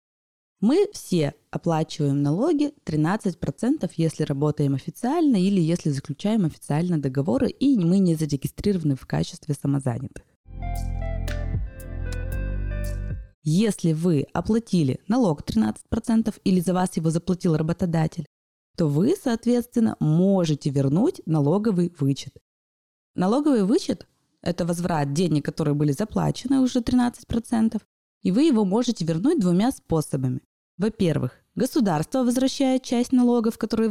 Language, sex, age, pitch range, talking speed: Russian, female, 20-39, 150-225 Hz, 110 wpm